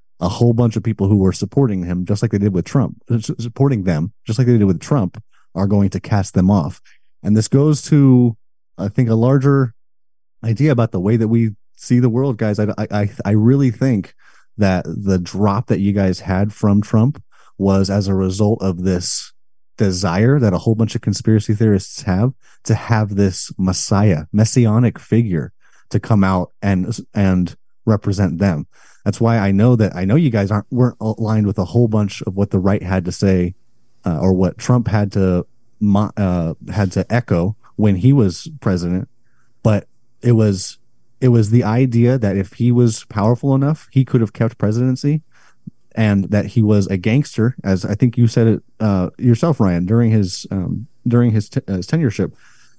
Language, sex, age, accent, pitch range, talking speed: English, male, 30-49, American, 95-120 Hz, 190 wpm